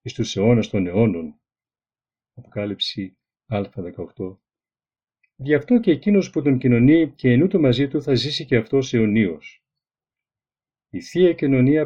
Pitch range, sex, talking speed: 110-140 Hz, male, 130 wpm